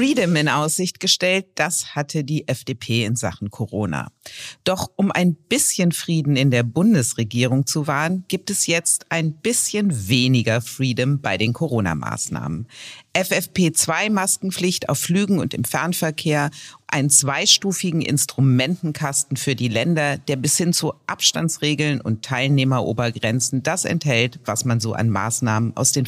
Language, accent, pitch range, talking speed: German, German, 115-160 Hz, 135 wpm